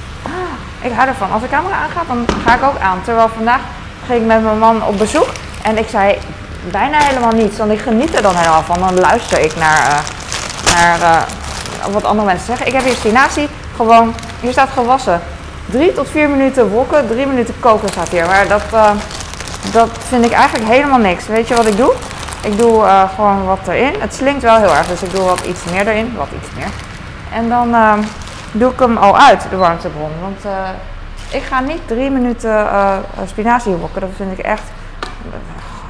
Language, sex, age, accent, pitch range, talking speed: Dutch, female, 20-39, Dutch, 185-240 Hz, 200 wpm